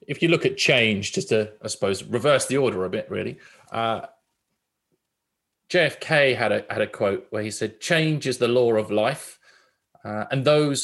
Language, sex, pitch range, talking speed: English, male, 105-135 Hz, 190 wpm